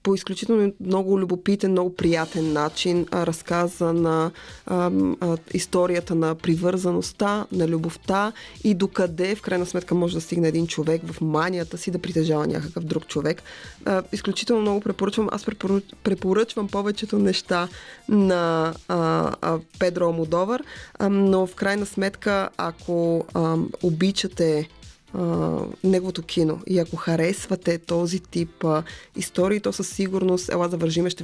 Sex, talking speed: female, 135 wpm